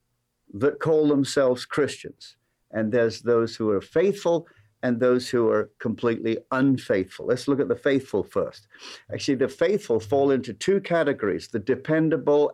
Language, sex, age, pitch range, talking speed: English, male, 60-79, 125-175 Hz, 150 wpm